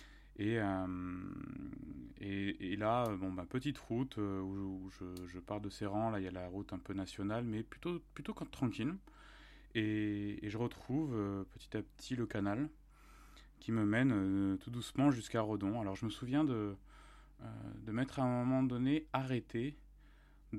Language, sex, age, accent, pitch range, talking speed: French, male, 20-39, French, 100-120 Hz, 185 wpm